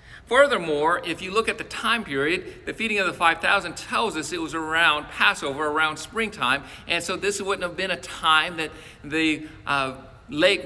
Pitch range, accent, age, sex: 155-195 Hz, American, 50-69, male